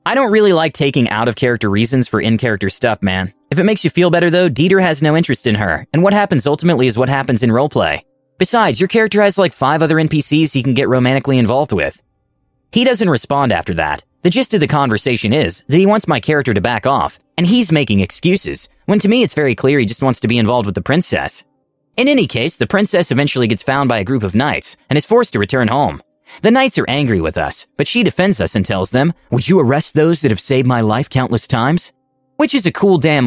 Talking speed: 240 wpm